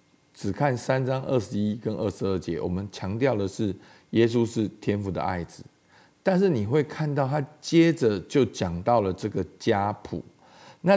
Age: 50-69